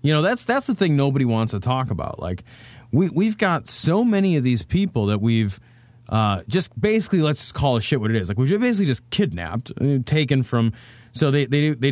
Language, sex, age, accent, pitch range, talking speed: English, male, 30-49, American, 110-145 Hz, 220 wpm